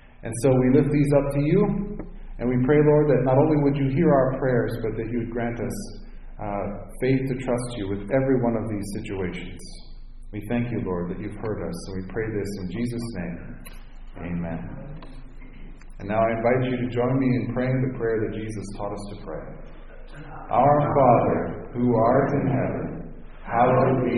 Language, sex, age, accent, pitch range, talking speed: English, male, 40-59, American, 110-135 Hz, 195 wpm